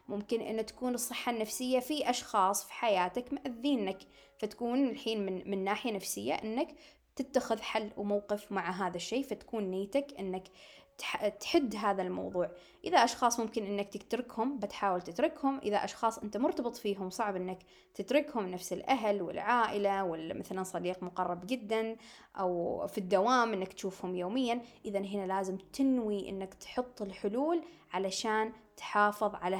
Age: 20-39